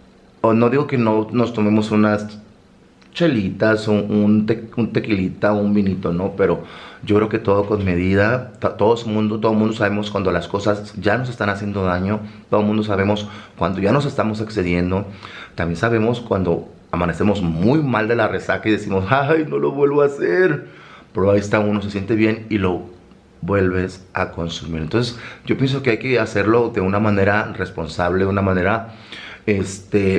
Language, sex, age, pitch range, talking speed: Spanish, male, 30-49, 95-120 Hz, 180 wpm